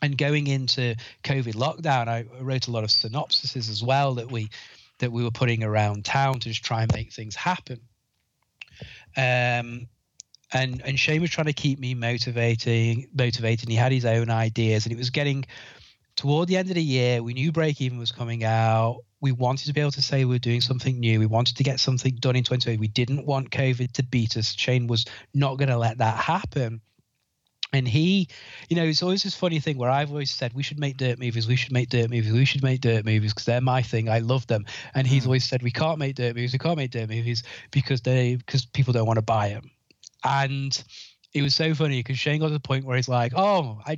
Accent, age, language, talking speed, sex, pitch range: British, 30-49, English, 230 wpm, male, 115-135 Hz